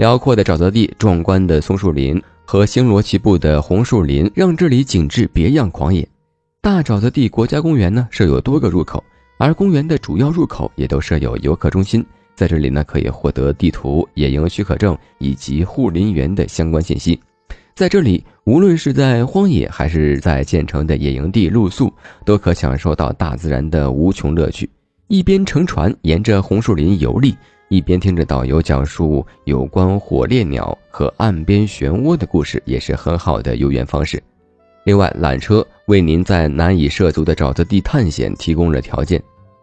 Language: Chinese